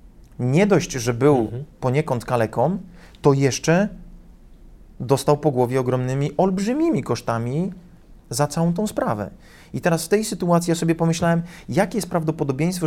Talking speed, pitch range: 135 wpm, 120-155 Hz